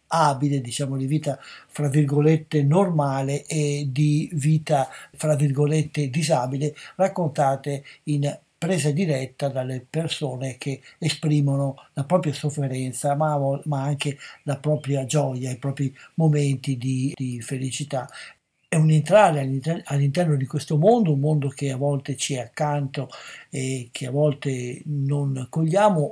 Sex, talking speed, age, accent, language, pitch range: male, 135 wpm, 60-79, native, Italian, 135-155 Hz